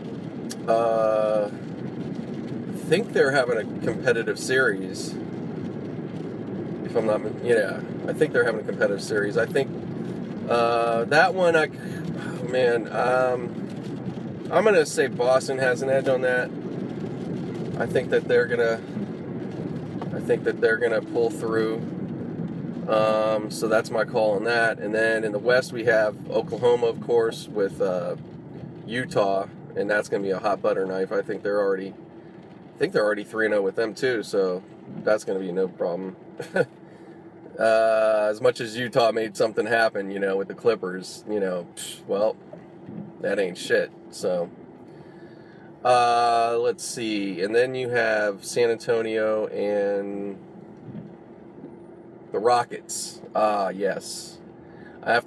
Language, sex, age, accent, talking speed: English, male, 30-49, American, 145 wpm